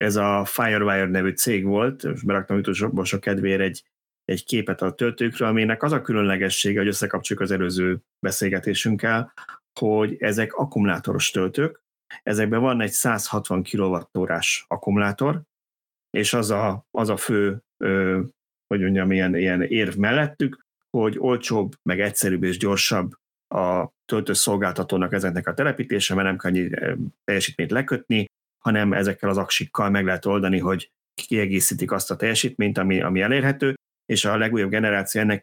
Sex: male